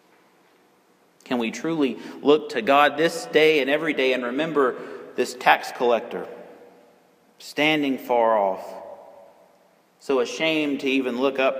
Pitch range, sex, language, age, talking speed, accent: 125-150 Hz, male, English, 40-59, 130 wpm, American